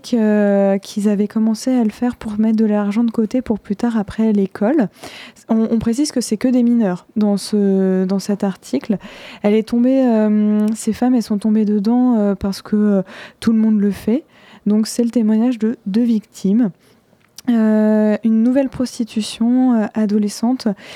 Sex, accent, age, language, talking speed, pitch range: female, French, 20-39, French, 180 wpm, 210-235 Hz